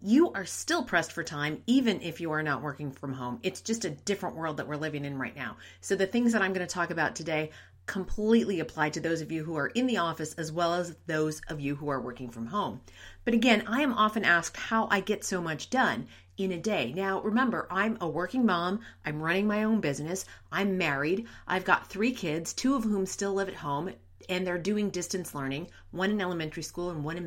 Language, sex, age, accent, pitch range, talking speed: English, female, 40-59, American, 160-230 Hz, 235 wpm